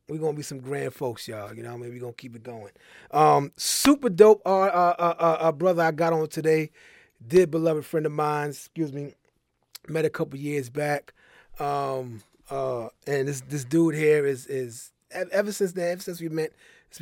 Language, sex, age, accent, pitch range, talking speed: English, male, 30-49, American, 125-160 Hz, 210 wpm